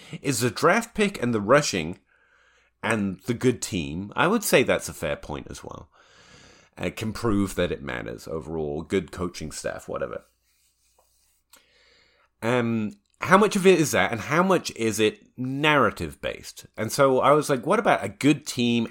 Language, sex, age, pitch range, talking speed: English, male, 30-49, 100-130 Hz, 170 wpm